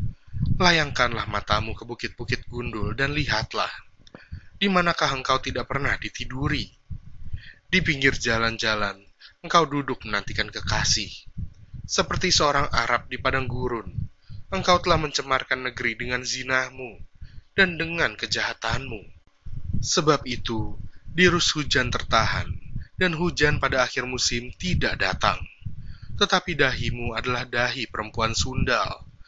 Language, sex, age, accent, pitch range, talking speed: Indonesian, male, 20-39, native, 110-140 Hz, 105 wpm